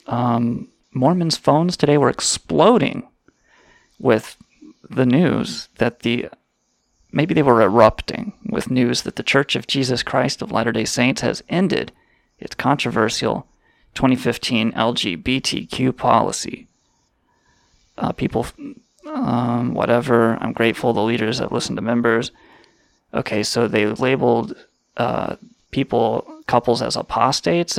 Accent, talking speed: American, 115 wpm